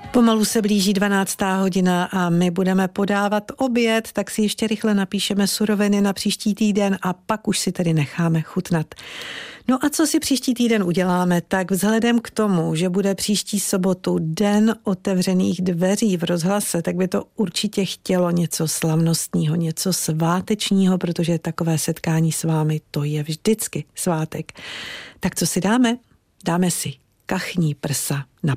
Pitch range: 165-210 Hz